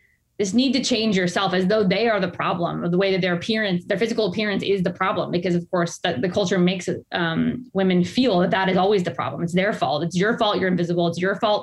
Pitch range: 175-210 Hz